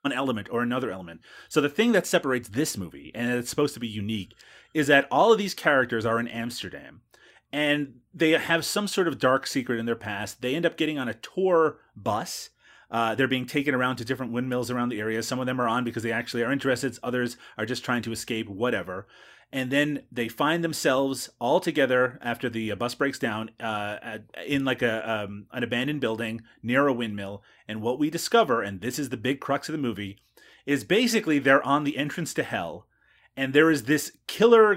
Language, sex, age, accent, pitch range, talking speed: English, male, 30-49, American, 120-150 Hz, 210 wpm